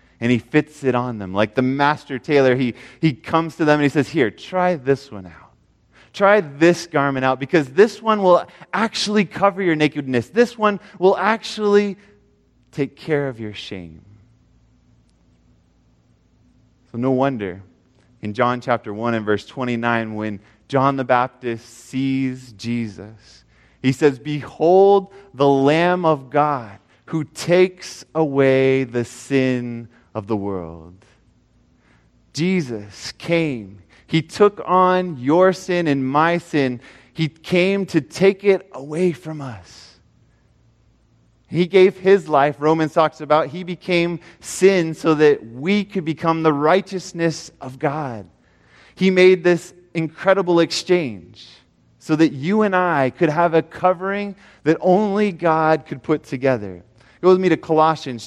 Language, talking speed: English, 145 wpm